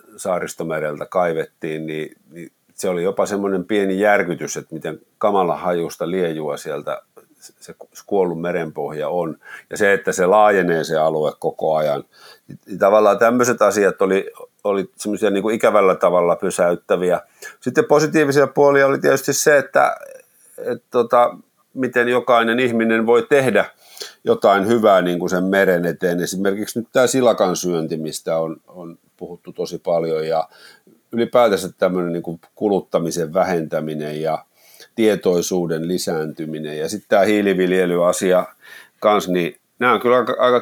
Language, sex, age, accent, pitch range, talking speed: Finnish, male, 50-69, native, 85-115 Hz, 130 wpm